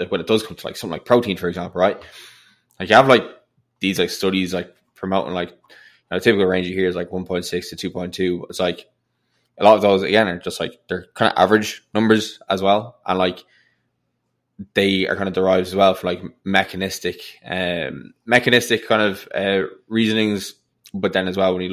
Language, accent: English, Irish